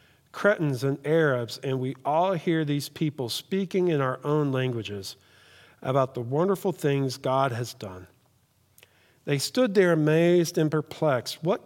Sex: male